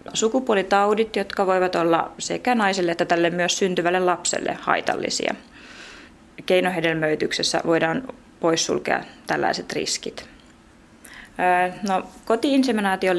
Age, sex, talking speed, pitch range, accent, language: 20-39, female, 80 wpm, 165-200 Hz, native, Finnish